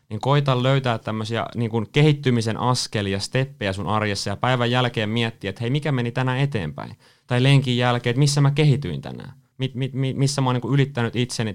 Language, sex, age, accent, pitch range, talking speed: Finnish, male, 20-39, native, 105-130 Hz, 175 wpm